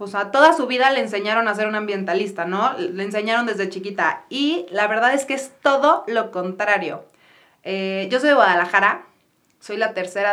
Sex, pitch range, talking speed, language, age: female, 205-260 Hz, 200 wpm, Spanish, 30-49